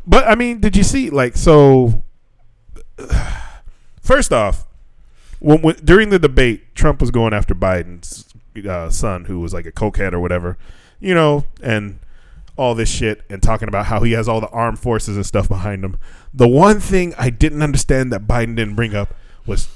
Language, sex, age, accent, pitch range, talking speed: English, male, 20-39, American, 105-145 Hz, 185 wpm